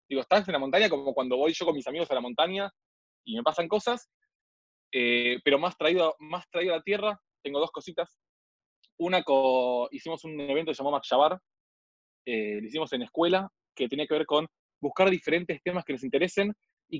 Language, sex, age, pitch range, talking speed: Spanish, male, 20-39, 130-180 Hz, 200 wpm